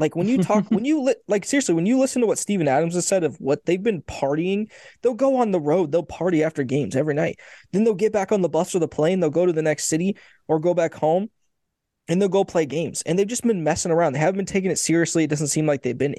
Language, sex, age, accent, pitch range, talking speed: English, male, 20-39, American, 150-190 Hz, 280 wpm